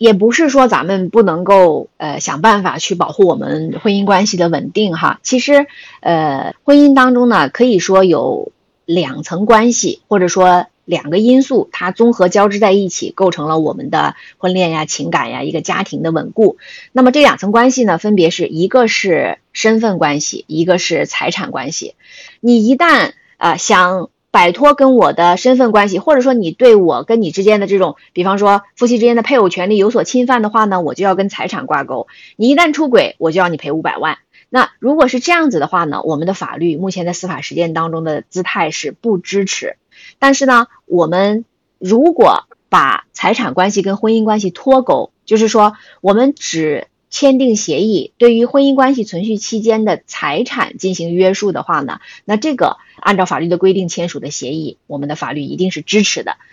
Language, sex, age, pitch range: Chinese, female, 20-39, 180-250 Hz